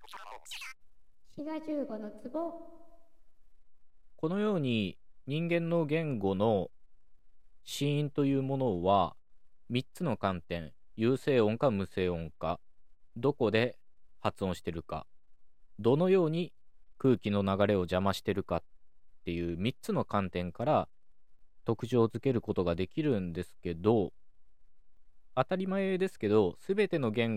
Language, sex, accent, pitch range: Japanese, male, native, 95-145 Hz